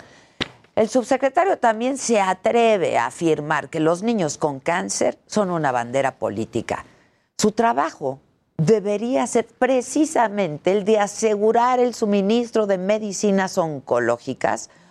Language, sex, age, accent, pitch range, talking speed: Spanish, female, 50-69, Mexican, 155-230 Hz, 115 wpm